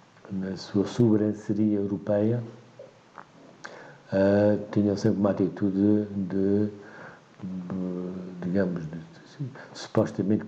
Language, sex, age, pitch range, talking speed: Portuguese, male, 60-79, 95-110 Hz, 65 wpm